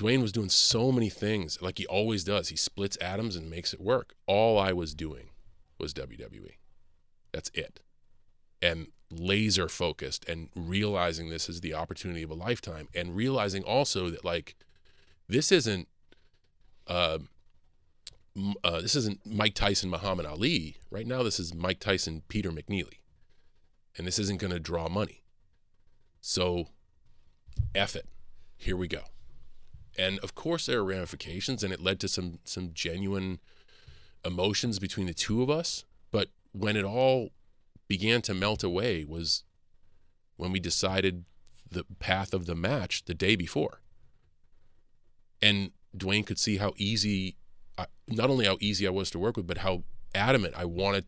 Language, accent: English, American